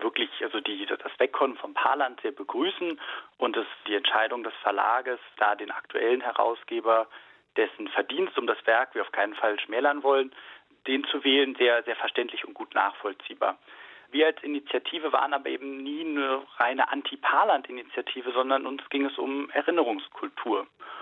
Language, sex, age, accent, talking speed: German, male, 40-59, German, 155 wpm